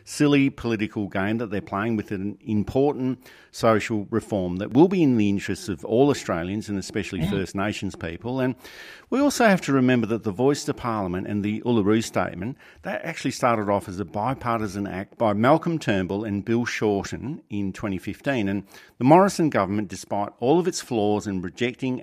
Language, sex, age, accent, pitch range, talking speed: English, male, 50-69, Australian, 100-120 Hz, 185 wpm